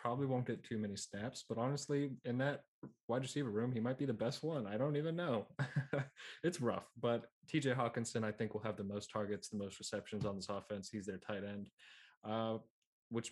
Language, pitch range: English, 100-115 Hz